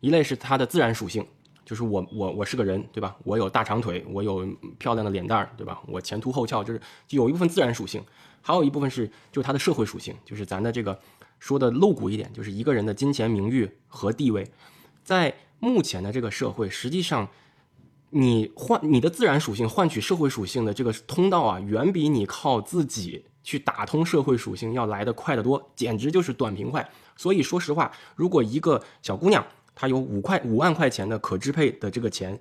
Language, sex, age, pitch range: Chinese, male, 20-39, 110-145 Hz